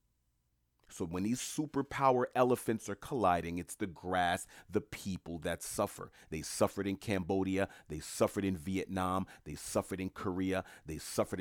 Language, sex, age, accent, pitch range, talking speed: English, male, 30-49, American, 90-110 Hz, 145 wpm